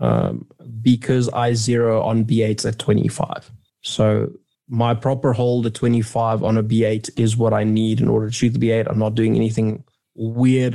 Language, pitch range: English, 110-130 Hz